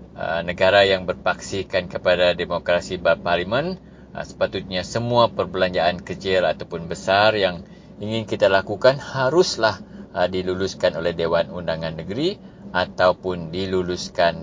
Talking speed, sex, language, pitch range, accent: 100 wpm, male, English, 90-105 Hz, Indonesian